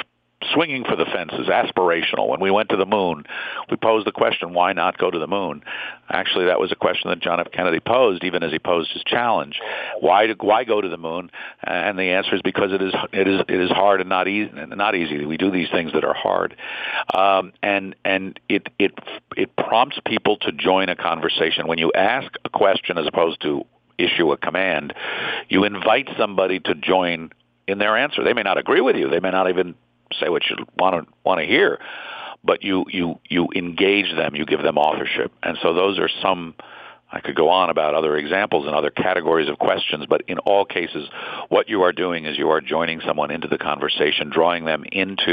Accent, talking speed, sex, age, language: American, 210 wpm, male, 50-69, English